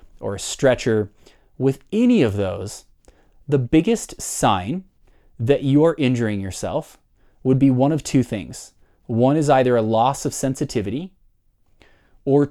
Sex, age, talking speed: male, 30-49, 135 wpm